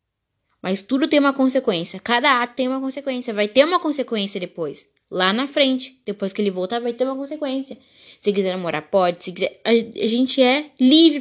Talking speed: 195 wpm